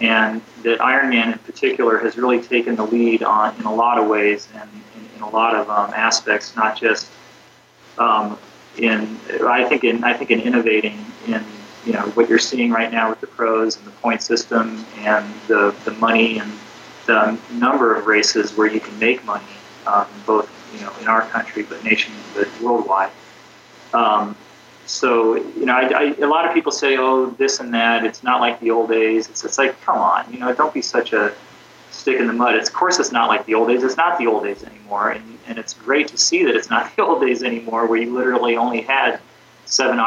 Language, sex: English, male